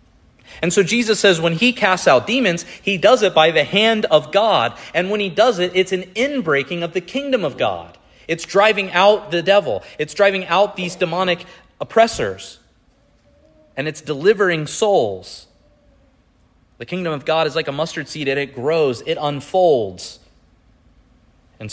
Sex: male